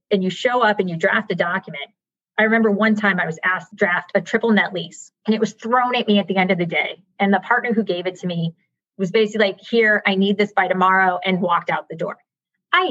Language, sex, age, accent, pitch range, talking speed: English, female, 30-49, American, 185-230 Hz, 265 wpm